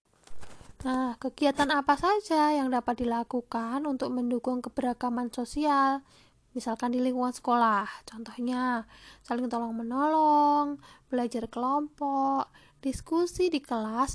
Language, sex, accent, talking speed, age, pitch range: Indonesian, female, native, 100 wpm, 20-39, 240-290 Hz